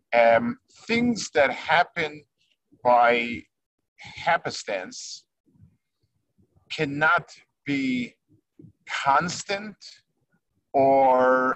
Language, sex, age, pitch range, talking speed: English, male, 50-69, 115-155 Hz, 50 wpm